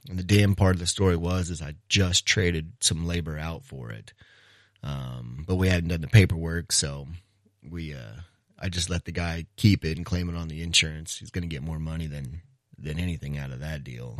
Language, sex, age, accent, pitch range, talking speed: English, male, 30-49, American, 80-100 Hz, 225 wpm